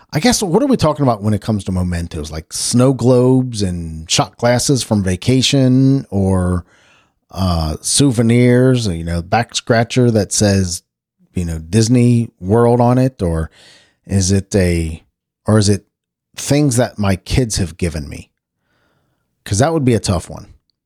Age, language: 40-59, English